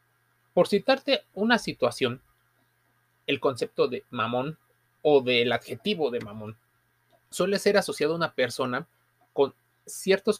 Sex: male